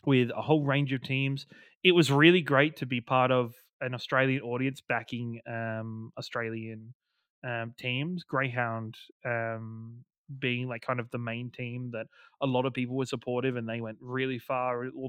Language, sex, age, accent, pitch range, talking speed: English, male, 20-39, Australian, 115-145 Hz, 175 wpm